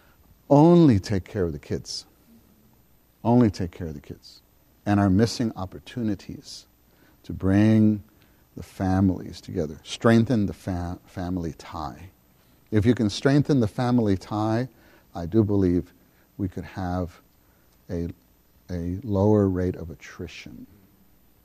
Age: 50-69